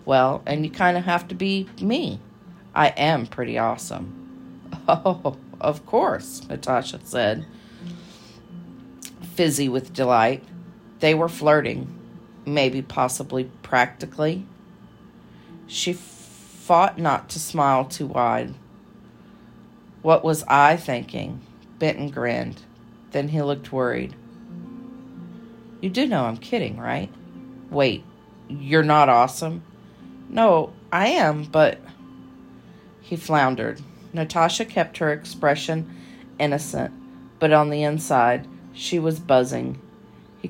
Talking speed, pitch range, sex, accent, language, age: 110 wpm, 130-175 Hz, female, American, English, 40-59